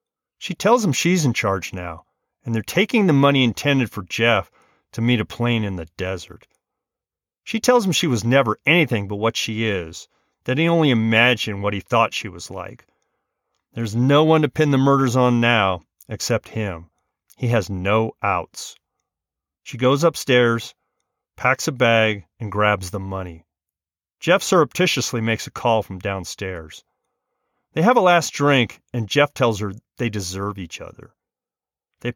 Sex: male